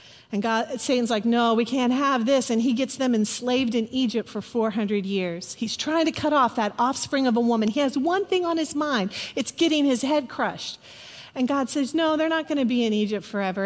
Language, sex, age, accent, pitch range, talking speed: English, female, 40-59, American, 205-275 Hz, 230 wpm